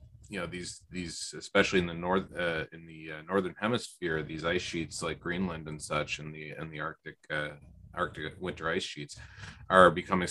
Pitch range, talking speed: 80-90 Hz, 190 wpm